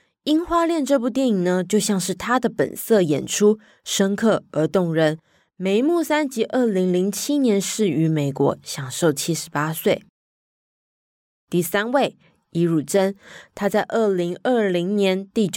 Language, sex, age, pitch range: Chinese, female, 20-39, 170-245 Hz